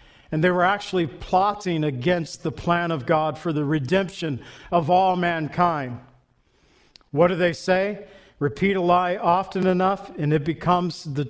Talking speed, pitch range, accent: 155 wpm, 160-195 Hz, American